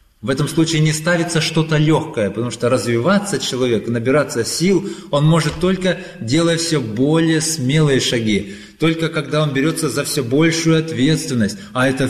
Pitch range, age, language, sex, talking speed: 110-155 Hz, 20-39, Russian, male, 155 wpm